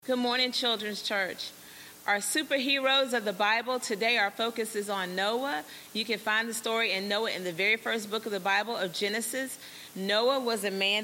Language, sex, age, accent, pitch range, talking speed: English, female, 30-49, American, 195-245 Hz, 195 wpm